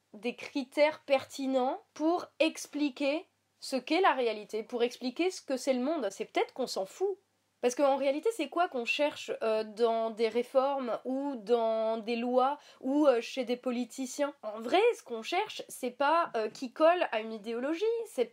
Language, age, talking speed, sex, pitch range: French, 20-39, 170 wpm, female, 245-315 Hz